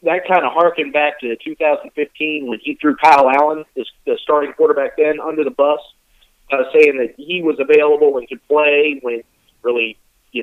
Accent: American